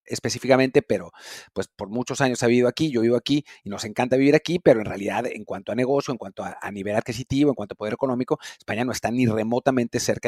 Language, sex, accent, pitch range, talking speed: English, male, Mexican, 115-145 Hz, 240 wpm